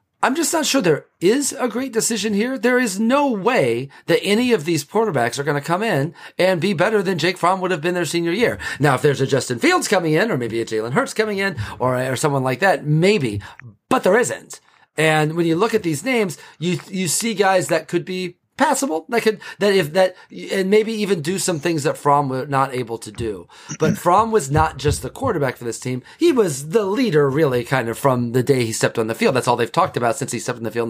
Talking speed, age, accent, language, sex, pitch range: 250 wpm, 40-59, American, English, male, 130-200 Hz